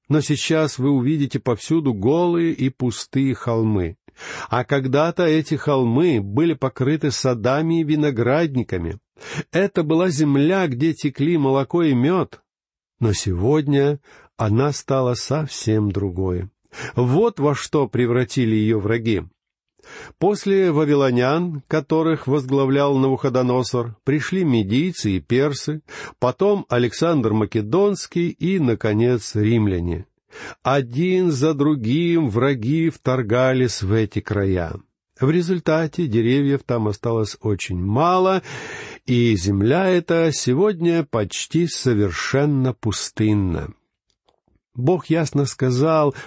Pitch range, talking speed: 115-155 Hz, 100 wpm